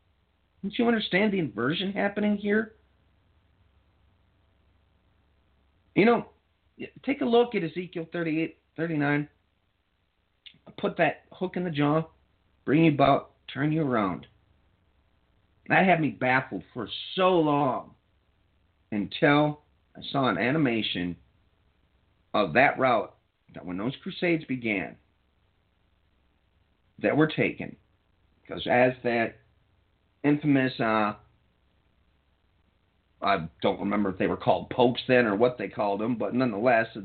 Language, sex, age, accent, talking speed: English, male, 50-69, American, 115 wpm